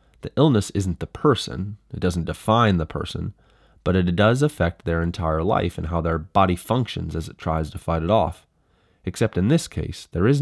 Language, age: English, 30-49